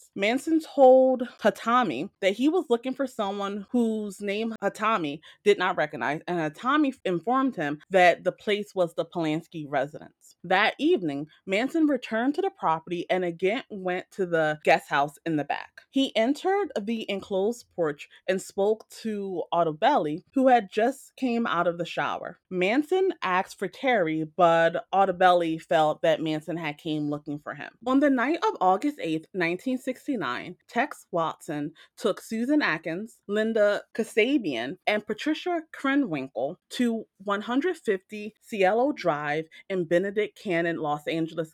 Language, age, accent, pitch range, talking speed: English, 20-39, American, 170-255 Hz, 145 wpm